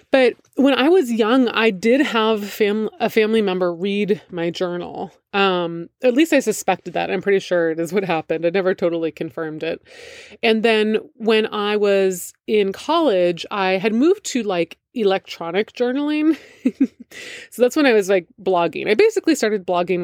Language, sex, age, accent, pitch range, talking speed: English, female, 20-39, American, 175-230 Hz, 175 wpm